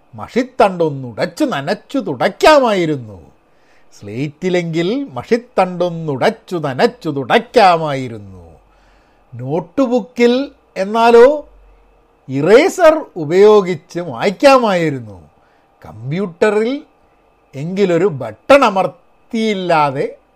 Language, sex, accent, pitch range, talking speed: Malayalam, male, native, 140-220 Hz, 50 wpm